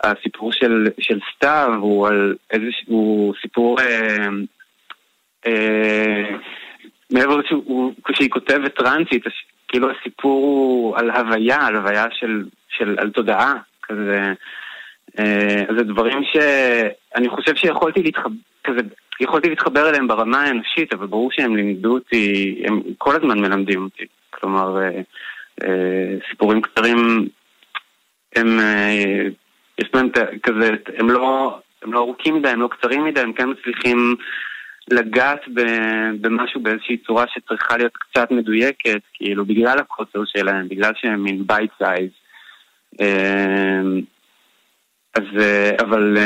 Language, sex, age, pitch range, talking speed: Hebrew, male, 30-49, 105-125 Hz, 110 wpm